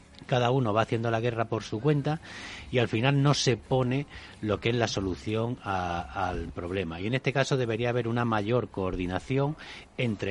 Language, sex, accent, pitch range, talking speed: Spanish, male, Spanish, 95-125 Hz, 190 wpm